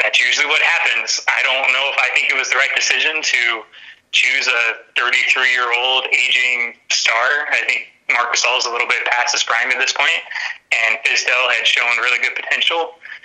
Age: 30-49